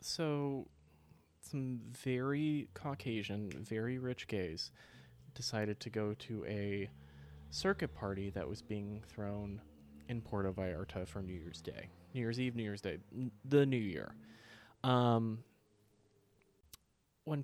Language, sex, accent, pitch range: English, male, American, 100-140 Hz